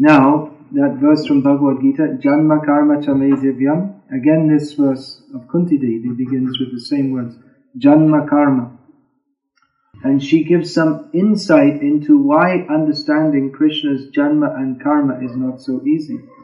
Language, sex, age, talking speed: English, male, 40-59, 135 wpm